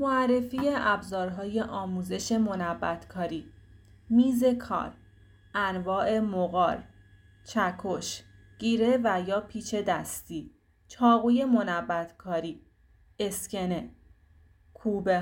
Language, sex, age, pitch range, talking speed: Persian, female, 30-49, 165-225 Hz, 70 wpm